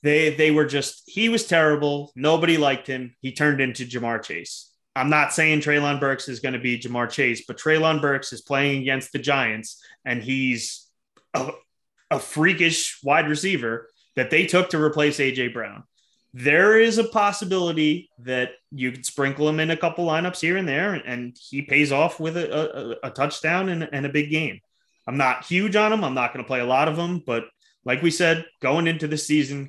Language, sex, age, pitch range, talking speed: English, male, 30-49, 130-160 Hz, 205 wpm